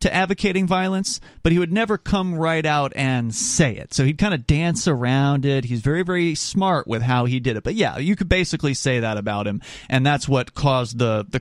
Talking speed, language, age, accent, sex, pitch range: 230 wpm, English, 30-49, American, male, 115-155 Hz